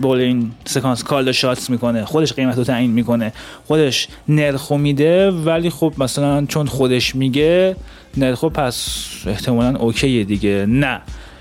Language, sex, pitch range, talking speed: Persian, male, 130-160 Hz, 125 wpm